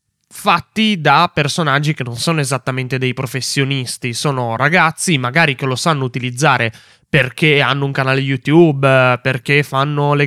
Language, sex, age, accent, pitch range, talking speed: Italian, male, 20-39, native, 130-155 Hz, 140 wpm